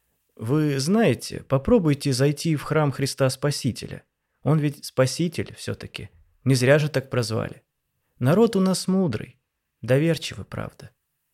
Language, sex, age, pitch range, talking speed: Russian, male, 20-39, 120-150 Hz, 120 wpm